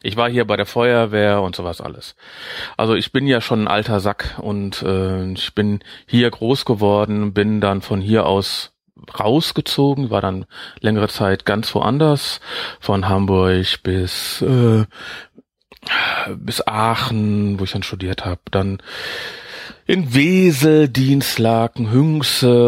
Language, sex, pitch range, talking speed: German, male, 100-135 Hz, 140 wpm